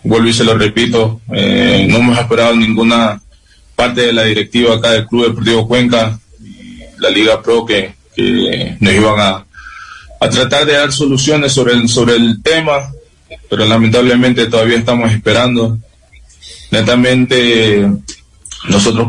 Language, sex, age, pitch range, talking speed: Spanish, male, 20-39, 110-125 Hz, 140 wpm